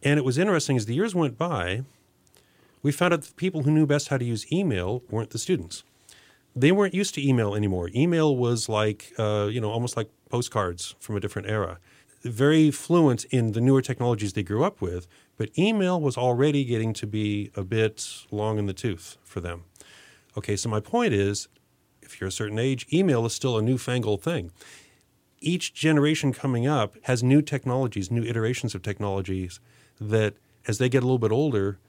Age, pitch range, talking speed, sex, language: 40-59, 105-140 Hz, 195 wpm, male, English